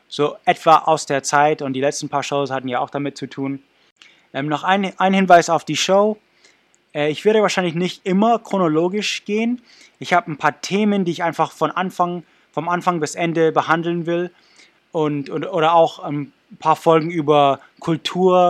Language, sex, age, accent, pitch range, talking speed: English, male, 20-39, German, 140-175 Hz, 185 wpm